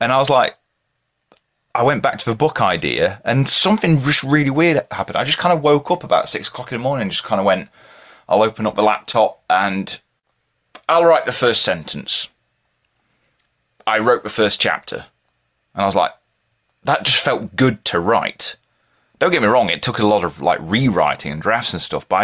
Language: English